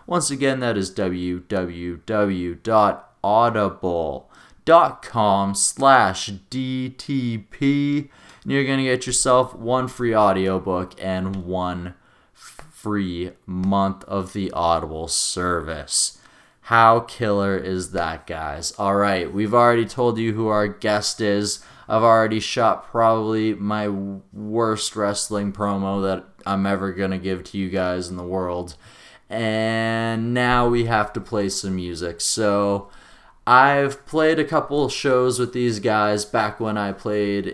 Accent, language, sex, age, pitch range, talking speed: American, English, male, 20-39, 95-115 Hz, 125 wpm